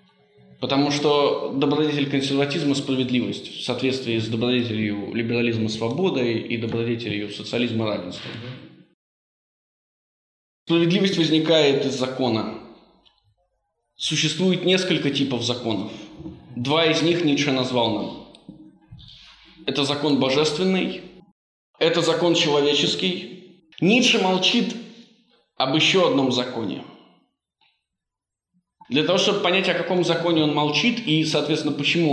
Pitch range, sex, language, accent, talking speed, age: 120-170 Hz, male, Russian, native, 100 wpm, 20-39